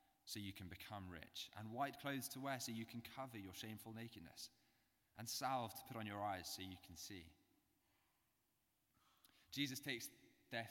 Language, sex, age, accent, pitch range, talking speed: English, male, 20-39, British, 95-120 Hz, 175 wpm